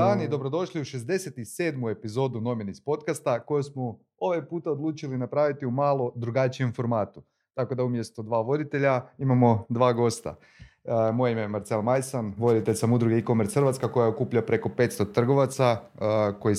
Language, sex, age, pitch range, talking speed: Croatian, male, 30-49, 115-150 Hz, 155 wpm